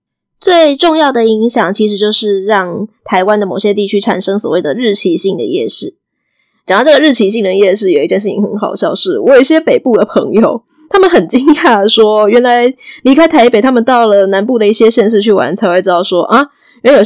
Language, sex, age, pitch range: Chinese, female, 20-39, 205-285 Hz